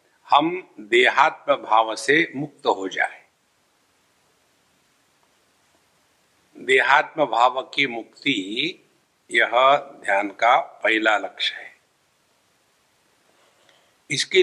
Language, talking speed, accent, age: English, 75 wpm, Indian, 60-79